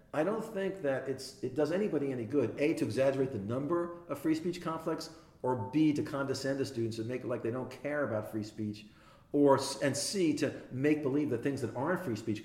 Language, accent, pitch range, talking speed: English, American, 115-155 Hz, 225 wpm